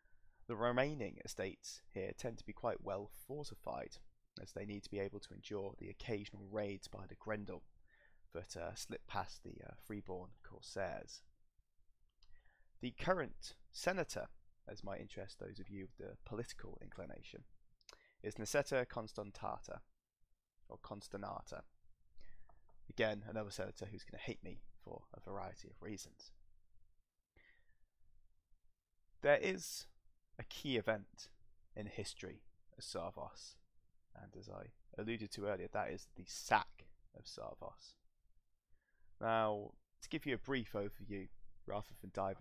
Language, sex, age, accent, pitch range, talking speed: English, male, 20-39, British, 95-110 Hz, 135 wpm